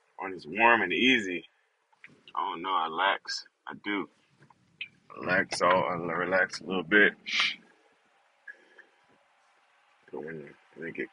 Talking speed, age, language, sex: 130 wpm, 20-39, English, male